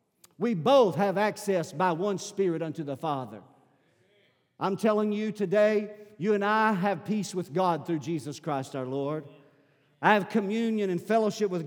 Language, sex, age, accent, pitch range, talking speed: English, male, 50-69, American, 135-185 Hz, 165 wpm